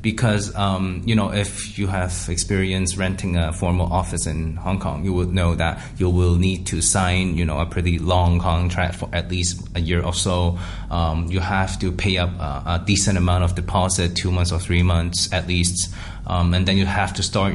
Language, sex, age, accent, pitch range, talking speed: English, male, 20-39, Chinese, 90-100 Hz, 215 wpm